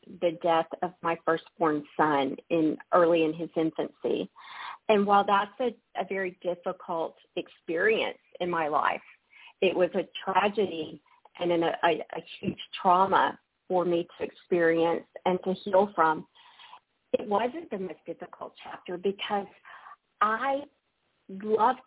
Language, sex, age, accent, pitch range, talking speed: English, female, 40-59, American, 175-215 Hz, 135 wpm